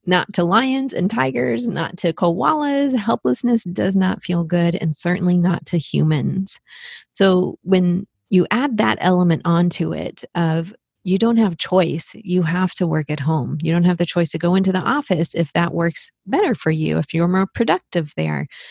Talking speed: 185 wpm